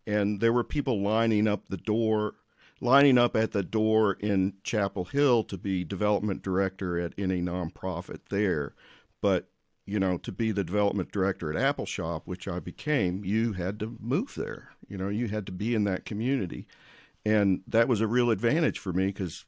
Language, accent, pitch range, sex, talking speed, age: English, American, 90-110 Hz, male, 190 wpm, 50-69